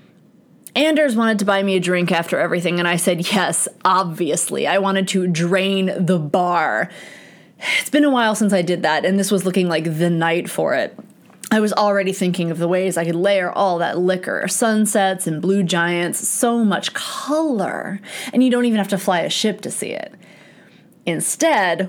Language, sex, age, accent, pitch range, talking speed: English, female, 20-39, American, 175-215 Hz, 190 wpm